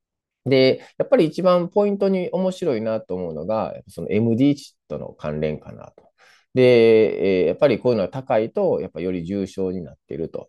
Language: Japanese